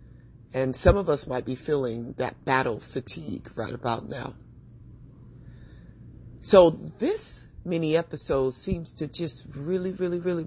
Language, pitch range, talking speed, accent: English, 125-175 Hz, 130 wpm, American